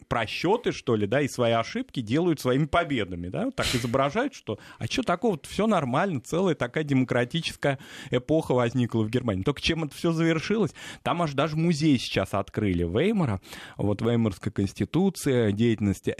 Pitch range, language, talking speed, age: 110-155 Hz, Russian, 165 wpm, 30-49